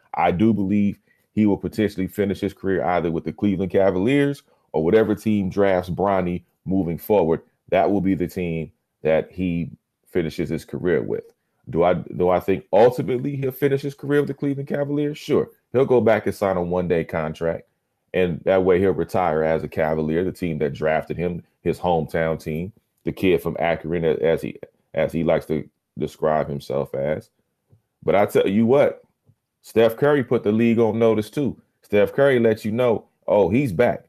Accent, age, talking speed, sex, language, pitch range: American, 30-49, 185 wpm, male, English, 95-115 Hz